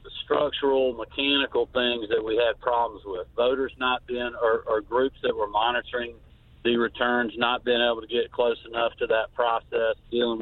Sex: male